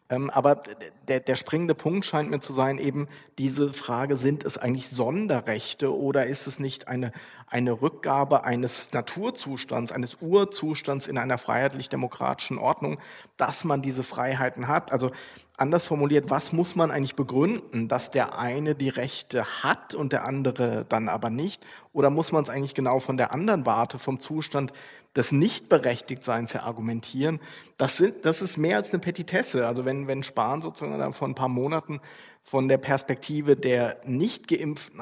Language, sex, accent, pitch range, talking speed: German, male, German, 125-150 Hz, 155 wpm